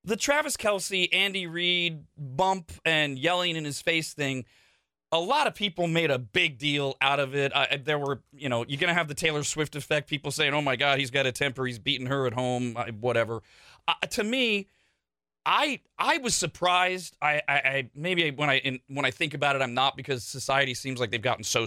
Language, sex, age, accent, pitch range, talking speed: English, male, 30-49, American, 135-175 Hz, 220 wpm